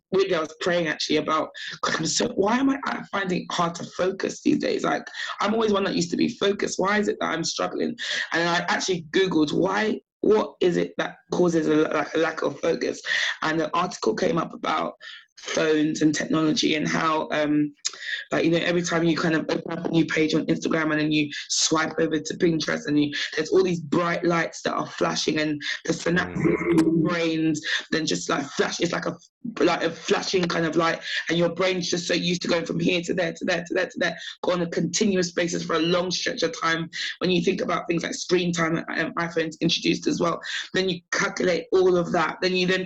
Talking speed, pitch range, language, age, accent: 225 wpm, 160-180 Hz, English, 20-39, British